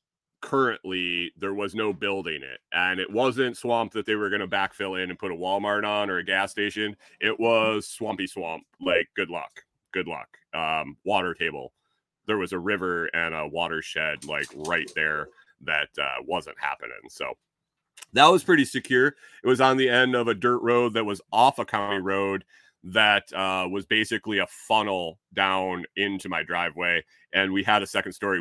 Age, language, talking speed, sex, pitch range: 30-49, English, 185 wpm, male, 95-110 Hz